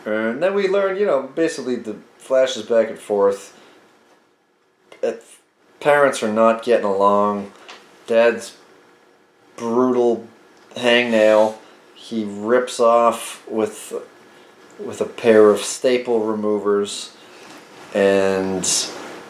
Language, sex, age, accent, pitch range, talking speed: English, male, 30-49, American, 105-125 Hz, 95 wpm